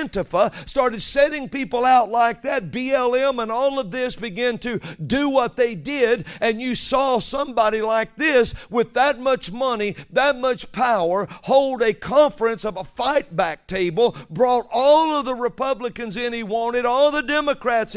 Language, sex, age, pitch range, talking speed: English, male, 50-69, 195-260 Hz, 165 wpm